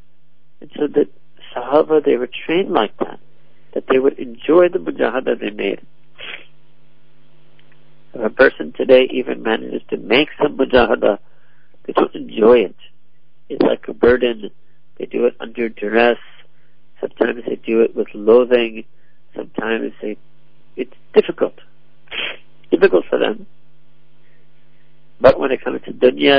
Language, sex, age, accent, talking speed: English, male, 60-79, American, 135 wpm